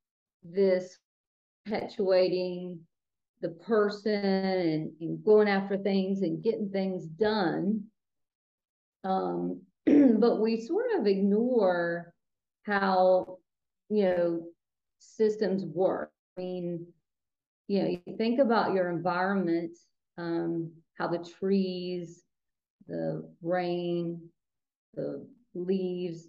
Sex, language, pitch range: female, English, 170-230 Hz